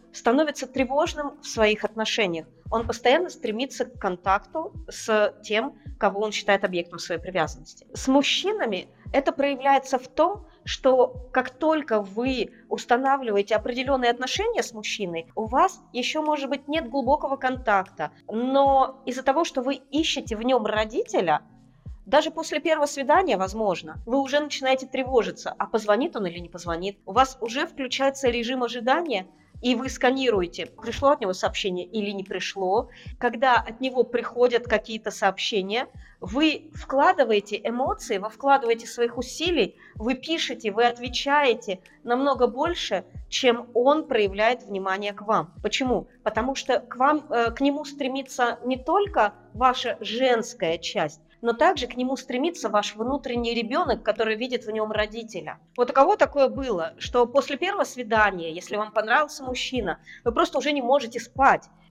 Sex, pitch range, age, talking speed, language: female, 215-275 Hz, 30-49, 145 wpm, Russian